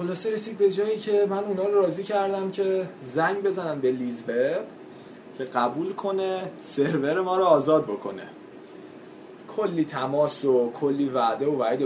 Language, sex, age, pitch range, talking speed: Persian, male, 20-39, 135-170 Hz, 150 wpm